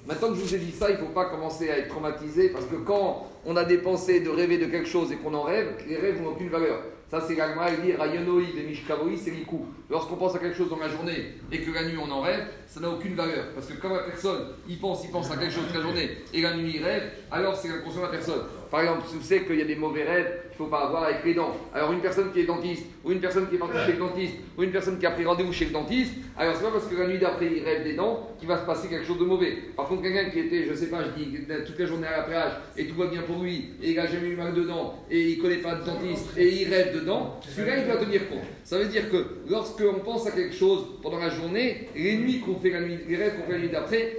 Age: 40-59